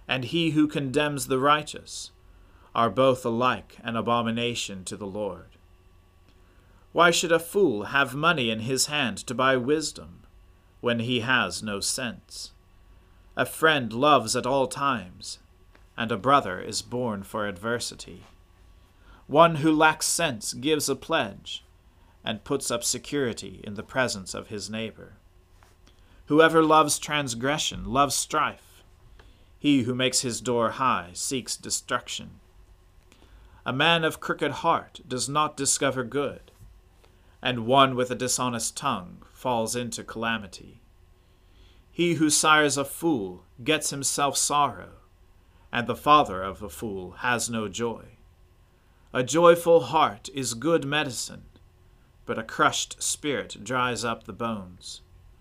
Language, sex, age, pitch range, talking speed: English, male, 40-59, 95-140 Hz, 135 wpm